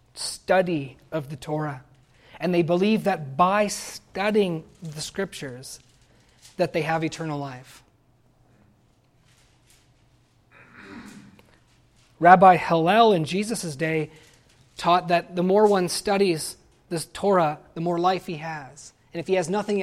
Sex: male